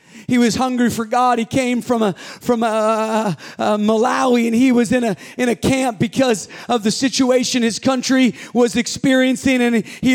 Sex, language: male, English